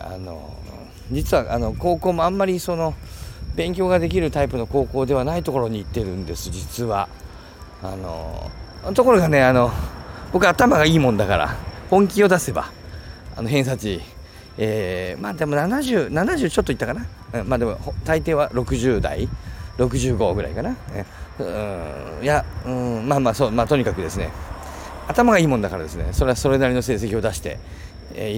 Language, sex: Japanese, male